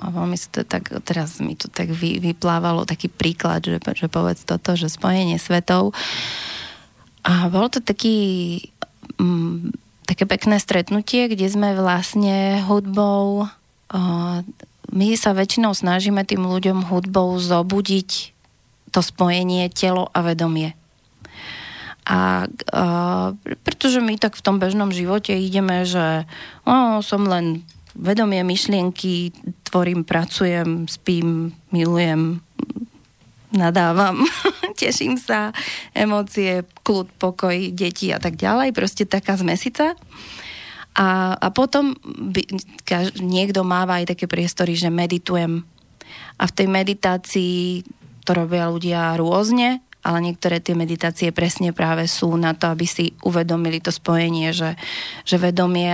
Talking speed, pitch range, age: 120 wpm, 170-200 Hz, 20-39